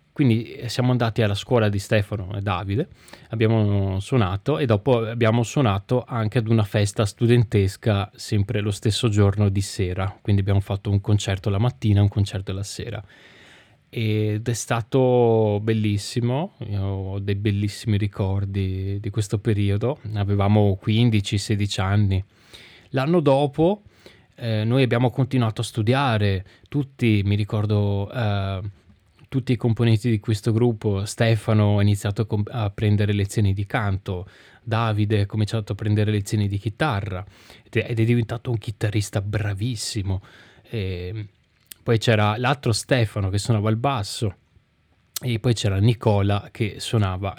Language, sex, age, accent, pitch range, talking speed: Italian, male, 20-39, native, 100-115 Hz, 135 wpm